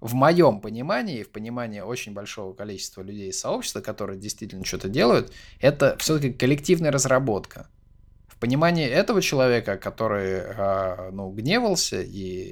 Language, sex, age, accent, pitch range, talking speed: Russian, male, 20-39, native, 100-140 Hz, 135 wpm